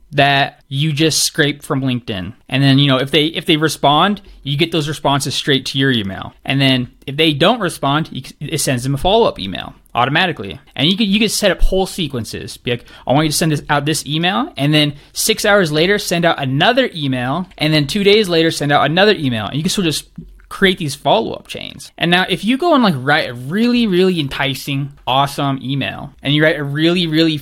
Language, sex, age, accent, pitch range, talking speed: English, male, 20-39, American, 140-195 Hz, 230 wpm